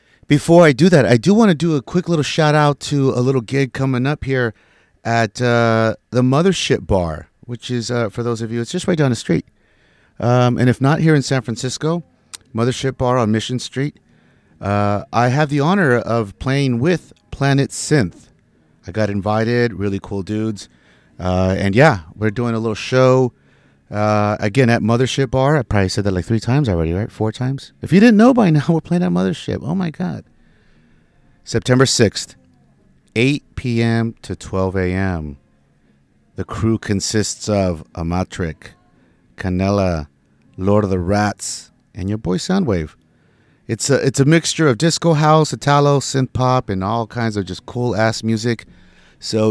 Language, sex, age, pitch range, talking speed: English, male, 30-49, 100-140 Hz, 175 wpm